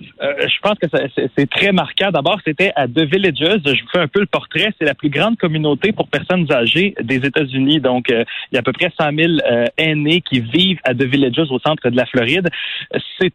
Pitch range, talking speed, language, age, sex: 135-180 Hz, 245 wpm, French, 30-49, male